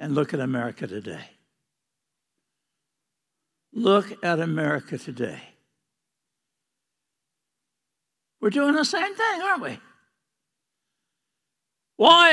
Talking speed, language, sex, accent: 85 wpm, English, male, American